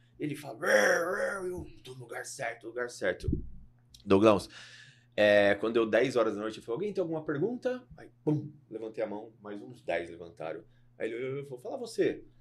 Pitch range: 105-145 Hz